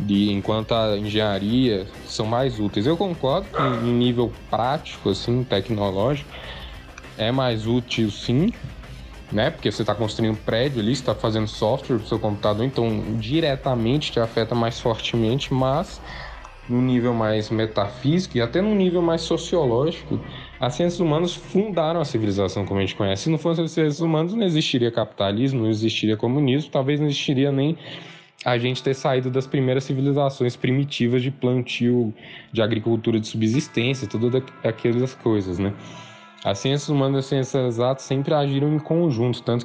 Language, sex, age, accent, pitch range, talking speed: Portuguese, male, 10-29, Brazilian, 110-140 Hz, 160 wpm